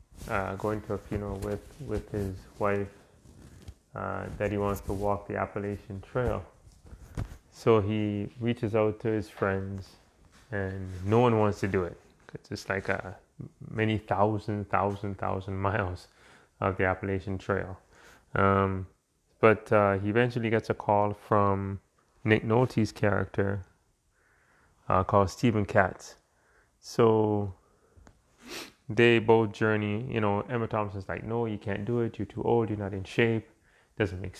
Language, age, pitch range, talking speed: English, 20-39, 95-110 Hz, 145 wpm